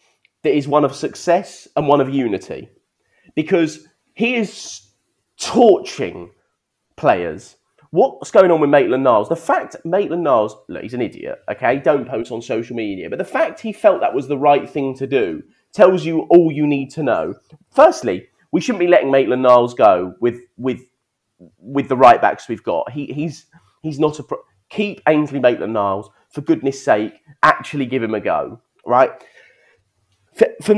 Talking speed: 175 wpm